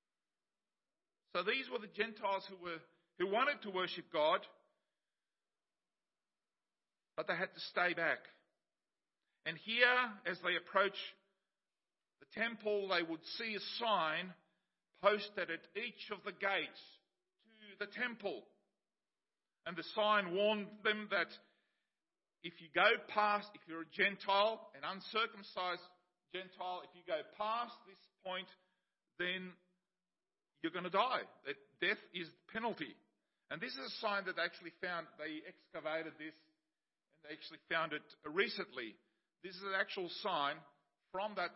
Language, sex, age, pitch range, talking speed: English, male, 50-69, 165-210 Hz, 140 wpm